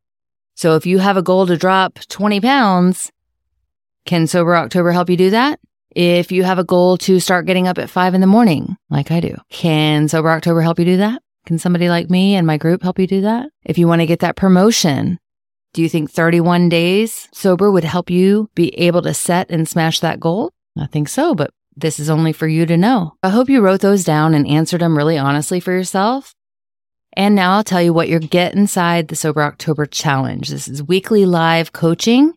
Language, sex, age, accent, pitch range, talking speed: English, female, 30-49, American, 150-185 Hz, 220 wpm